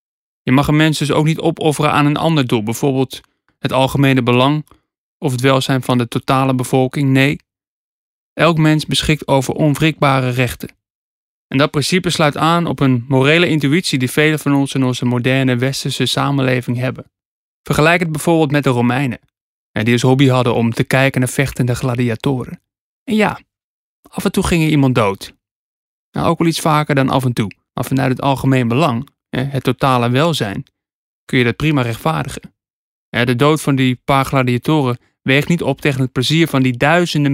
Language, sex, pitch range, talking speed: Dutch, male, 125-150 Hz, 180 wpm